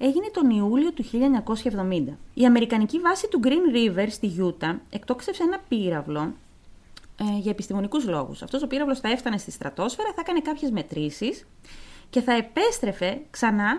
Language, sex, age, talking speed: Greek, female, 20-39, 150 wpm